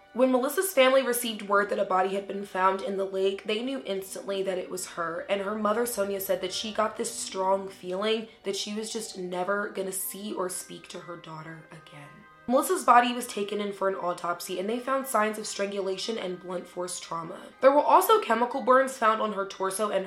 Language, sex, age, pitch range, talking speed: English, female, 20-39, 190-245 Hz, 220 wpm